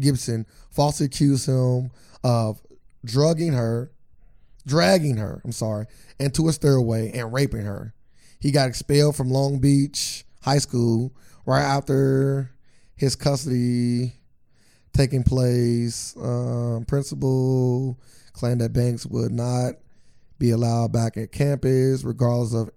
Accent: American